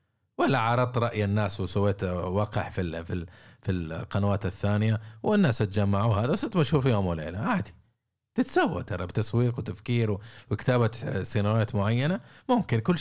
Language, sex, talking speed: Arabic, male, 125 wpm